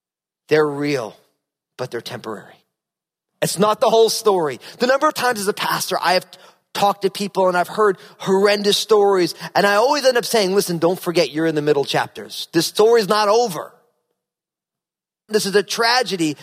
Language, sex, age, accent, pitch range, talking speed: English, male, 40-59, American, 160-215 Hz, 180 wpm